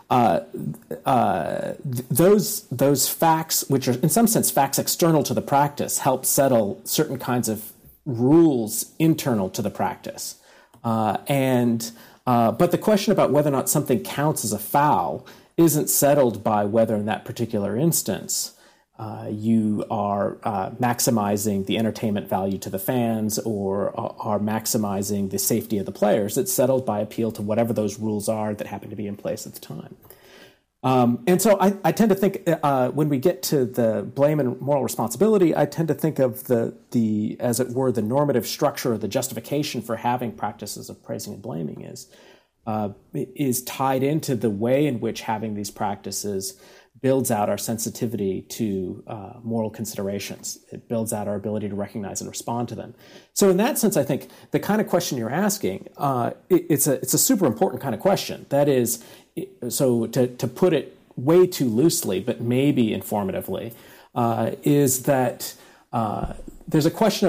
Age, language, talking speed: 40-59, English, 175 wpm